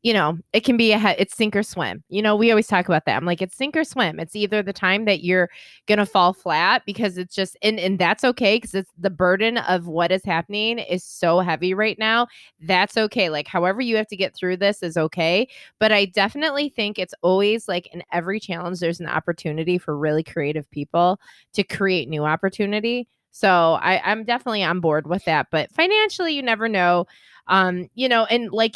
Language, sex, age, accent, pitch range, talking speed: English, female, 20-39, American, 175-220 Hz, 215 wpm